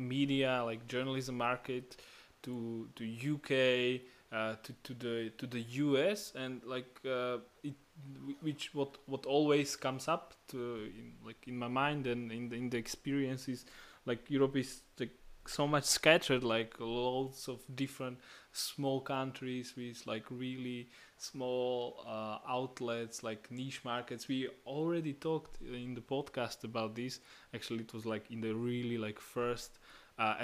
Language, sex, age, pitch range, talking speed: English, male, 20-39, 115-135 Hz, 145 wpm